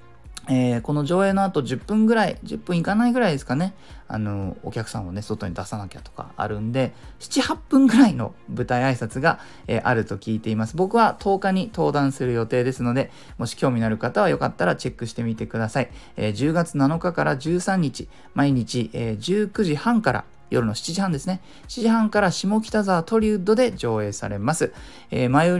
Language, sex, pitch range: Japanese, male, 115-180 Hz